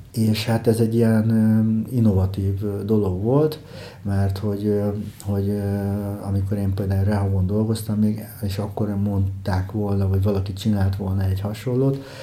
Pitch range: 95-110 Hz